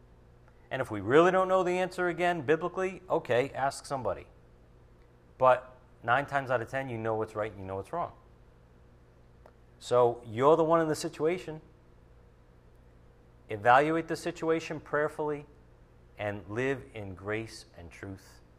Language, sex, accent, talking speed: English, male, American, 145 wpm